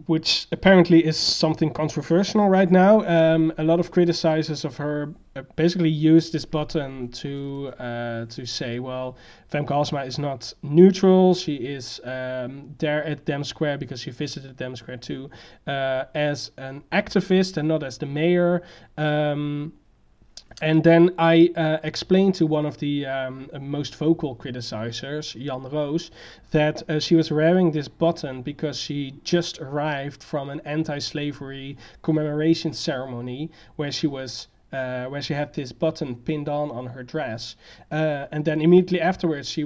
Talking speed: 155 wpm